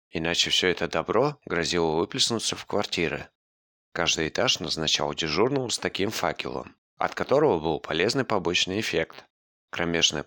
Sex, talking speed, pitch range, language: male, 130 wpm, 75-95 Hz, Russian